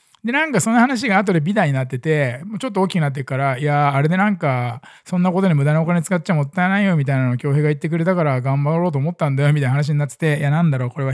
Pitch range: 140-195 Hz